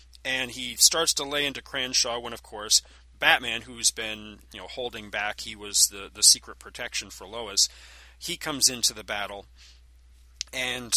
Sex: male